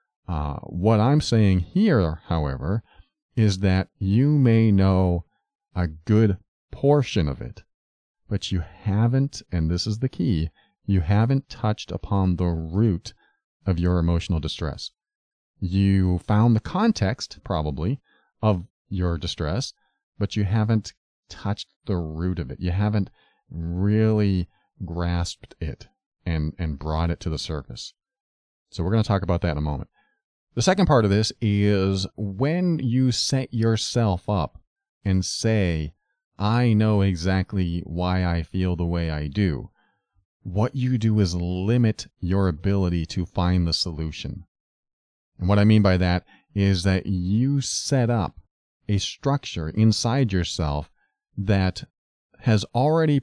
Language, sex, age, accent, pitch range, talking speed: English, male, 40-59, American, 85-110 Hz, 140 wpm